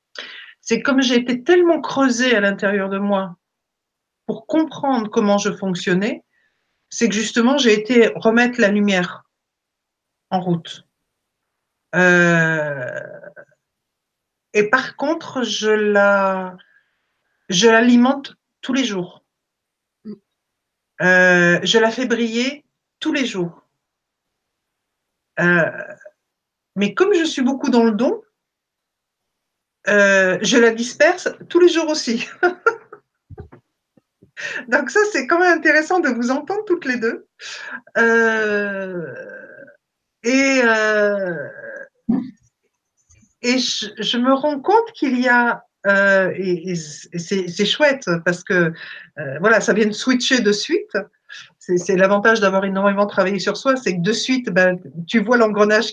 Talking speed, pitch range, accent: 125 wpm, 200-275 Hz, French